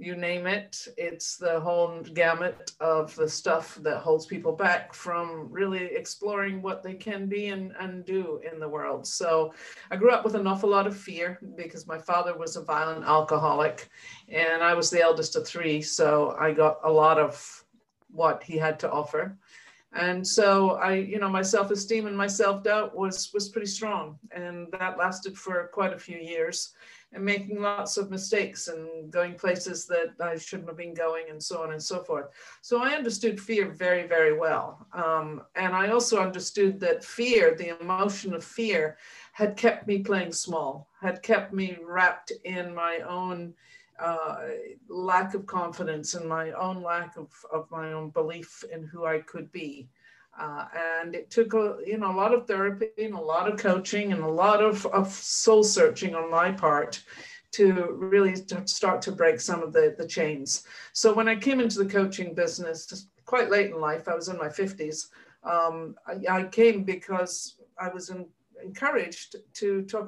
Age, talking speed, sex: 50-69, 180 wpm, female